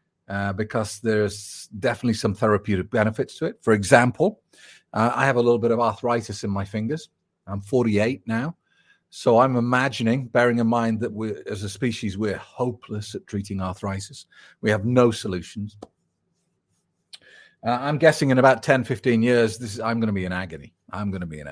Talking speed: 185 wpm